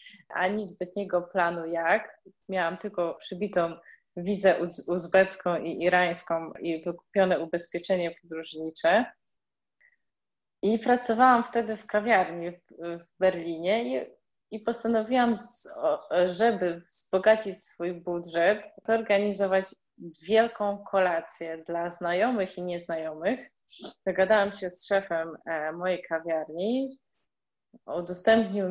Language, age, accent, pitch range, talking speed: Polish, 20-39, native, 170-210 Hz, 90 wpm